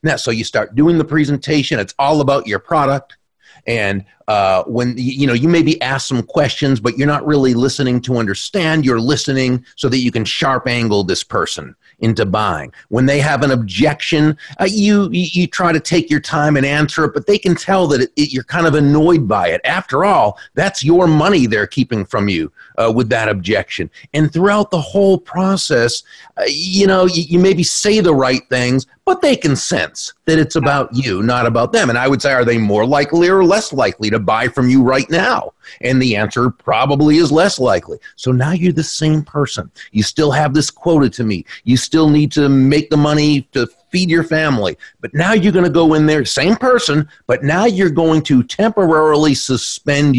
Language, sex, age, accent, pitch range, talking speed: English, male, 40-59, American, 130-170 Hz, 205 wpm